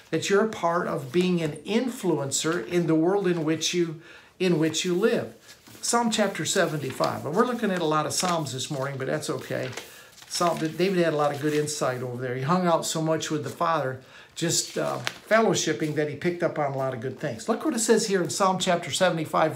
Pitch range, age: 150-190 Hz, 50-69